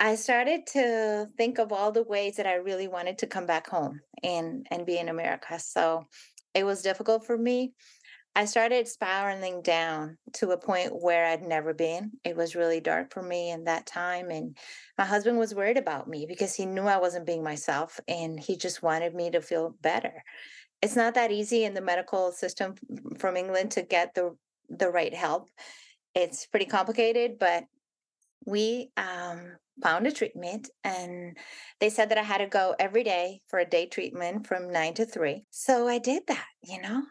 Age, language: 30-49, English